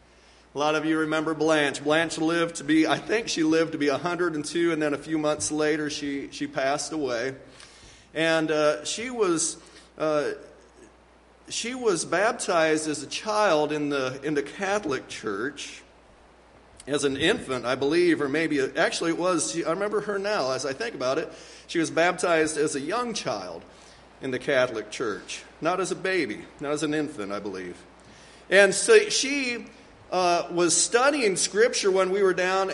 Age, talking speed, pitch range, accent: 50-69, 175 wpm, 145-205 Hz, American